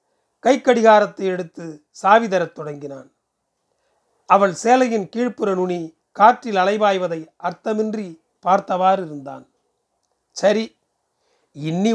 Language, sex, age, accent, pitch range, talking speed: Tamil, male, 40-59, native, 170-220 Hz, 80 wpm